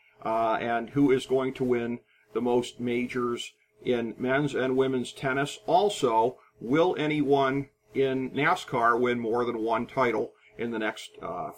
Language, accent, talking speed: English, American, 150 wpm